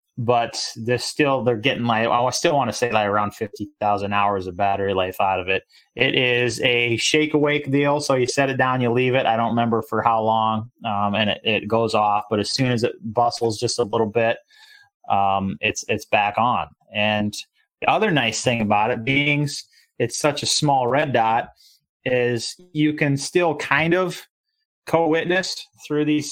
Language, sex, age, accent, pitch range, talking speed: English, male, 30-49, American, 115-145 Hz, 200 wpm